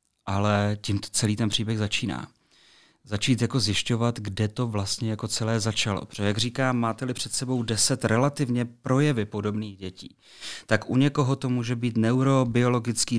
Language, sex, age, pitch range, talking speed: Czech, male, 30-49, 105-120 Hz, 150 wpm